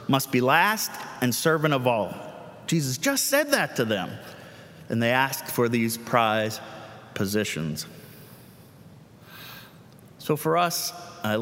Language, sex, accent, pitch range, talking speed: English, male, American, 120-180 Hz, 125 wpm